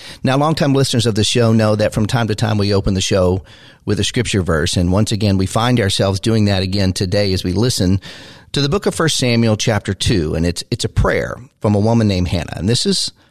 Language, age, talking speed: English, 40-59, 245 wpm